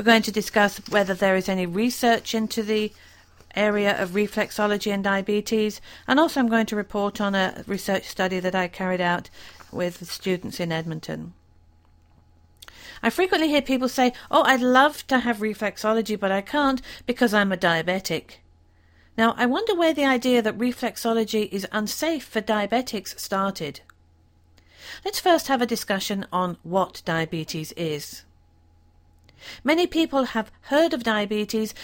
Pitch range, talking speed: 165-230 Hz, 150 wpm